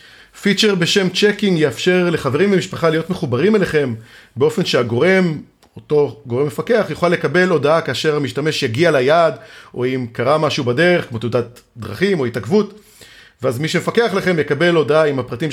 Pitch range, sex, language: 130-205 Hz, male, Hebrew